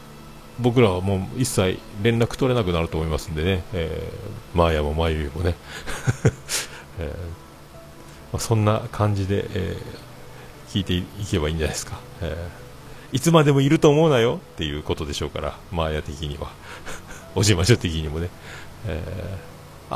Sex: male